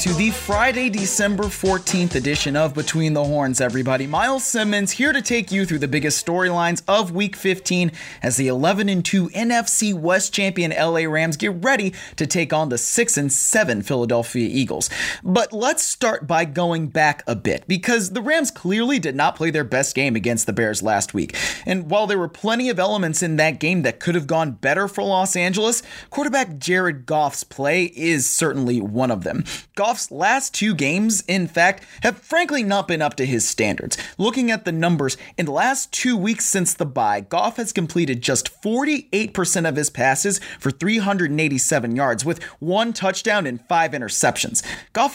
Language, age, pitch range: English, 30-49, 150-210 Hz